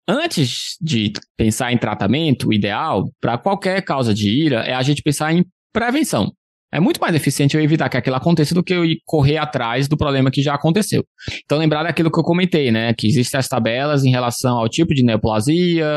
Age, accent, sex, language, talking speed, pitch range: 20-39, Brazilian, male, Portuguese, 205 wpm, 115-165 Hz